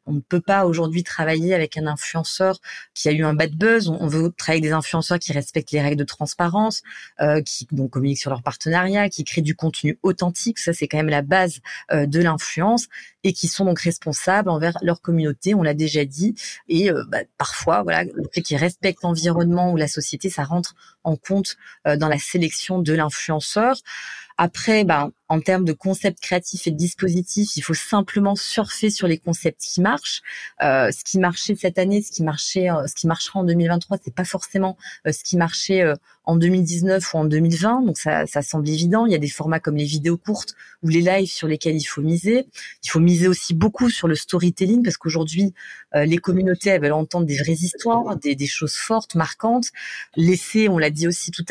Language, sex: French, female